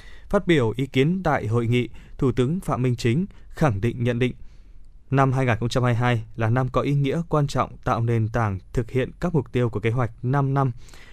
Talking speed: 205 wpm